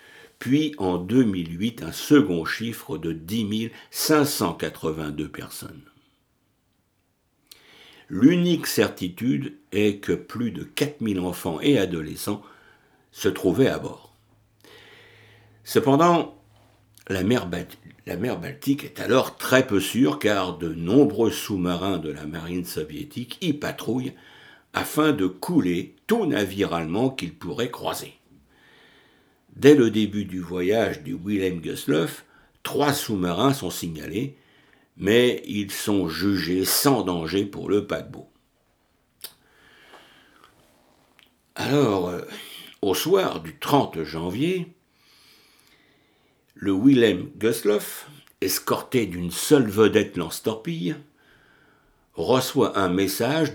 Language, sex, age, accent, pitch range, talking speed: French, male, 60-79, French, 90-140 Hz, 105 wpm